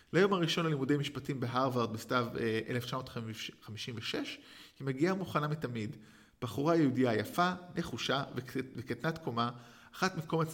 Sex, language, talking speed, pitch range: male, Hebrew, 110 wpm, 115-155 Hz